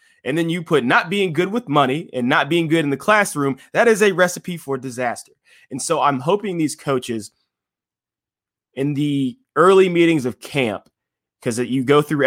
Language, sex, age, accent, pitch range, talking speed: English, male, 20-39, American, 110-140 Hz, 185 wpm